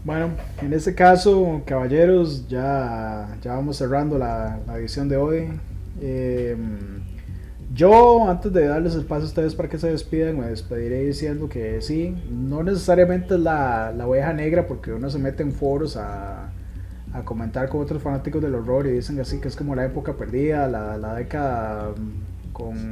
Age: 30-49